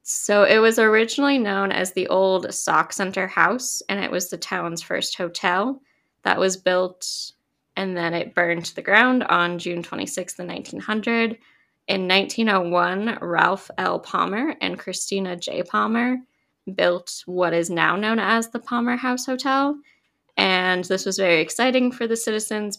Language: English